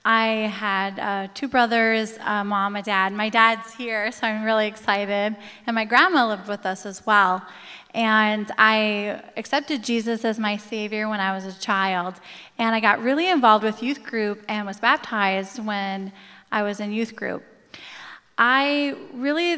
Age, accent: 20-39, American